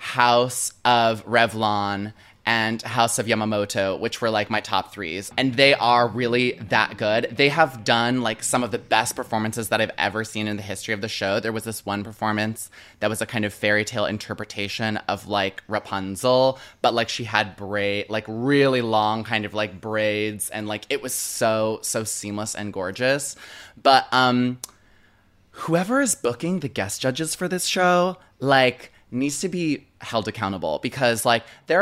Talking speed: 180 wpm